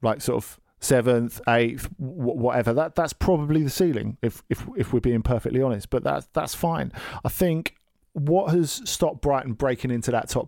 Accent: British